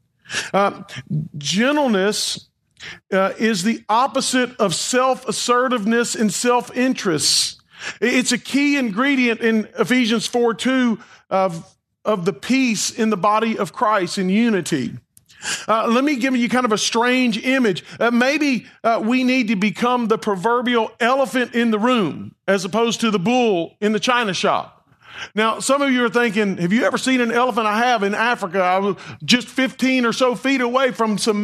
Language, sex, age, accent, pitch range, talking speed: English, male, 40-59, American, 200-250 Hz, 165 wpm